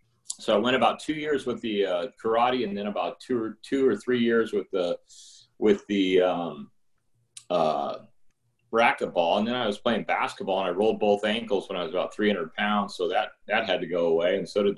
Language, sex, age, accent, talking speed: English, male, 40-59, American, 215 wpm